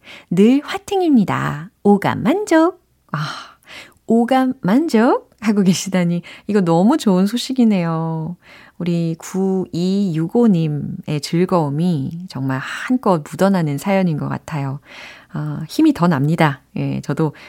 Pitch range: 160-255 Hz